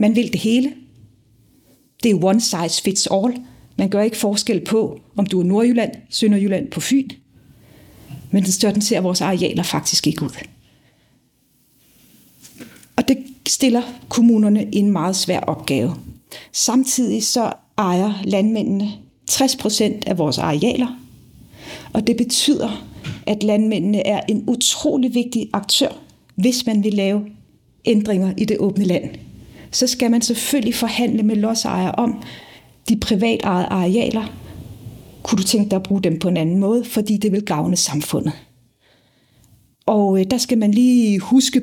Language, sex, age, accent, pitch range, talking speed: Danish, female, 40-59, native, 190-235 Hz, 145 wpm